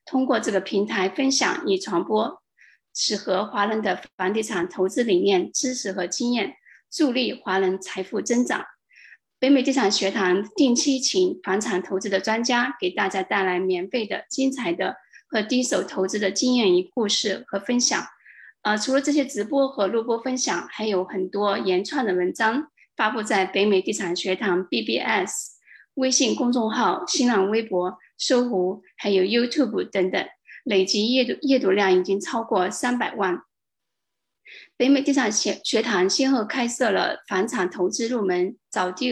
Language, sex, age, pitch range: Chinese, female, 20-39, 195-260 Hz